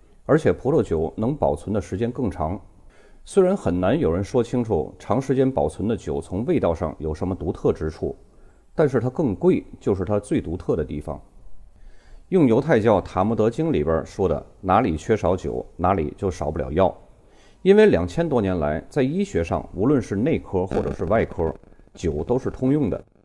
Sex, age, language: male, 30-49, Chinese